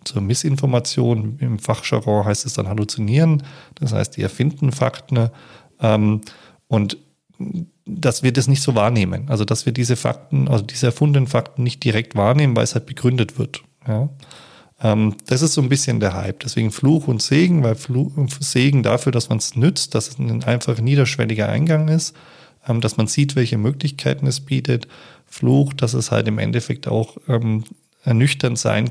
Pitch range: 110-140 Hz